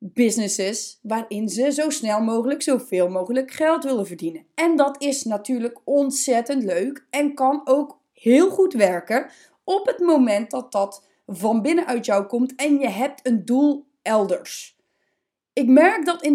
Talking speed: 155 wpm